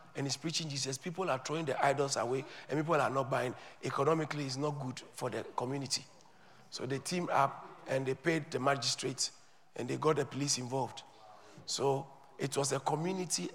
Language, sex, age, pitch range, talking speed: English, male, 50-69, 140-200 Hz, 185 wpm